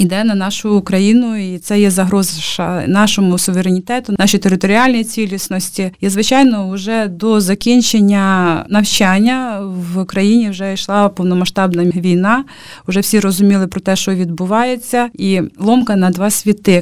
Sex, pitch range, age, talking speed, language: female, 180-210 Hz, 30-49, 130 wpm, Ukrainian